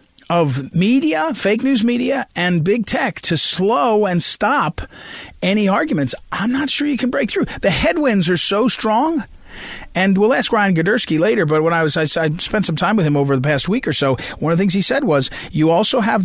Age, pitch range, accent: 40-59, 135-200 Hz, American